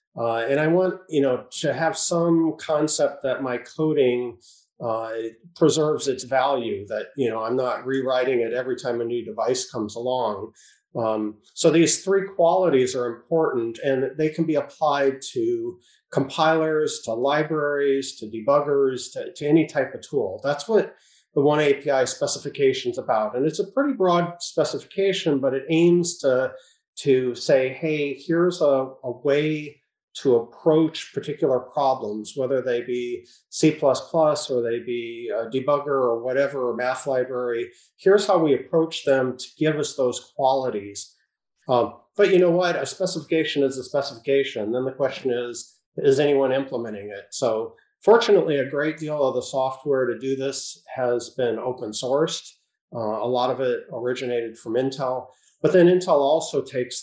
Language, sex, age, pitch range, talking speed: English, male, 40-59, 125-165 Hz, 160 wpm